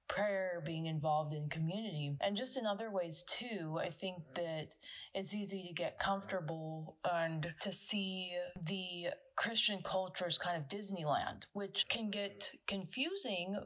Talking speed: 140 wpm